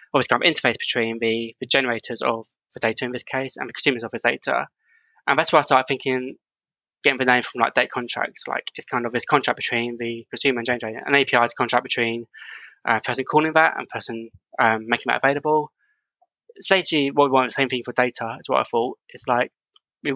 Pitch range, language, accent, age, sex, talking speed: 120-145 Hz, English, British, 20-39, male, 225 wpm